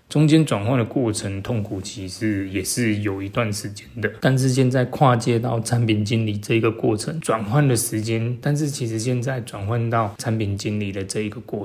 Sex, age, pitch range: male, 20-39, 105-120 Hz